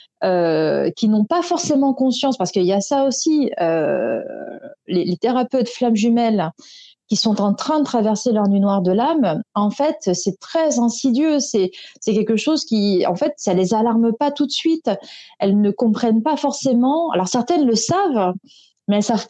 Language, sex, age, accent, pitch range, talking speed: French, female, 30-49, French, 190-295 Hz, 185 wpm